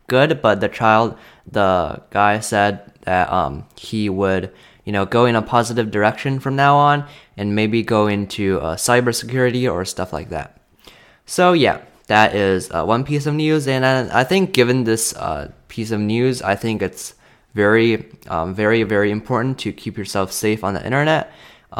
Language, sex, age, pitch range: Chinese, male, 20-39, 100-125 Hz